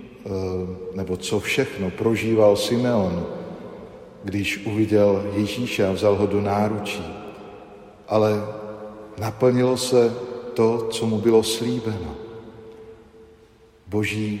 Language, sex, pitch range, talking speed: Slovak, male, 100-110 Hz, 90 wpm